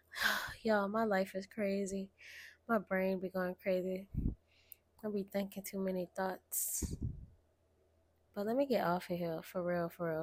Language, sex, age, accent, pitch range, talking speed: English, female, 10-29, American, 180-205 Hz, 160 wpm